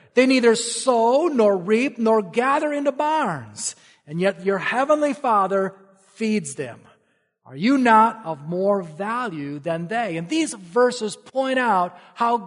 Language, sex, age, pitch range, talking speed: English, male, 40-59, 155-235 Hz, 145 wpm